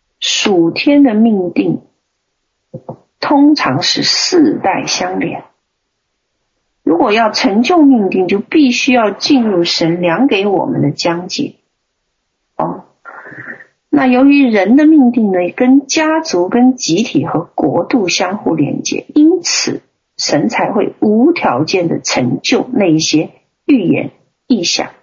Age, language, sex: 40-59, Chinese, female